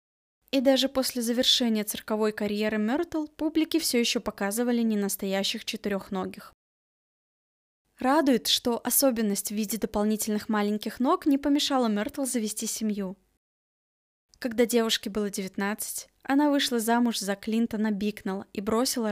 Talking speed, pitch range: 120 wpm, 210-255 Hz